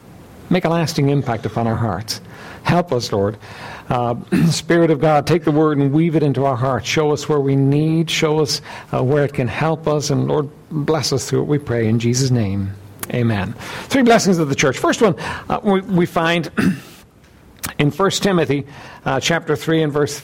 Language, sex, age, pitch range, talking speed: English, male, 60-79, 140-175 Hz, 200 wpm